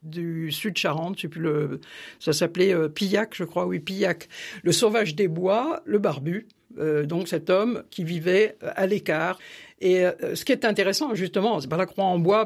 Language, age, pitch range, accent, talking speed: French, 60-79, 160-210 Hz, French, 195 wpm